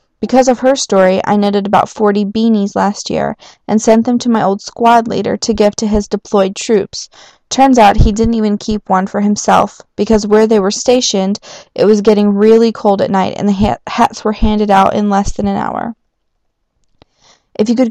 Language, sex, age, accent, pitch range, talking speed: English, female, 20-39, American, 195-225 Hz, 205 wpm